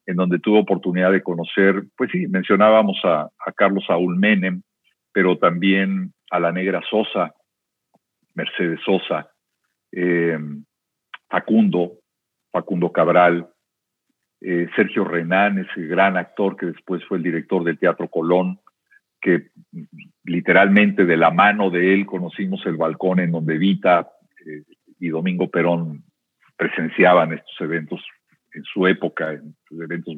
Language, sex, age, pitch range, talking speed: Spanish, male, 50-69, 85-110 Hz, 130 wpm